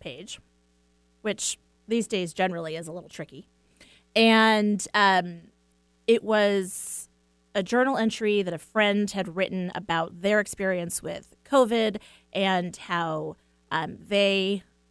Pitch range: 150-200 Hz